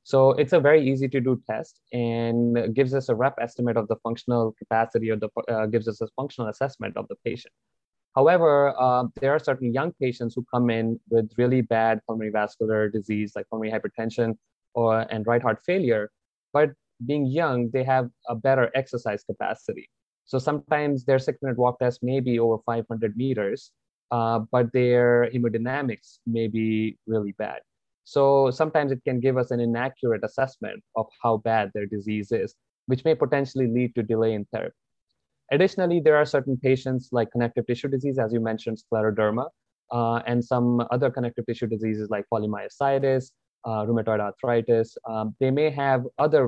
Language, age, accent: English, 20-39, Indian